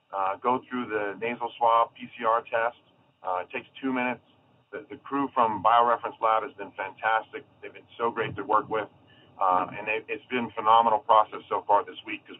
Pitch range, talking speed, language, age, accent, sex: 115-140 Hz, 205 wpm, English, 40-59, American, male